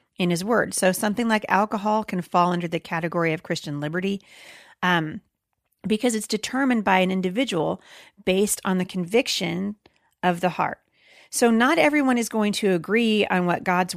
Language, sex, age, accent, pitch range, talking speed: English, female, 40-59, American, 175-230 Hz, 170 wpm